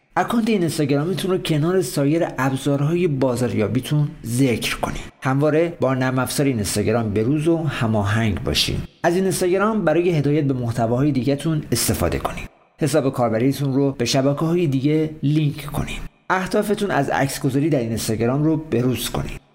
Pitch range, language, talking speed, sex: 120-160 Hz, Persian, 140 wpm, male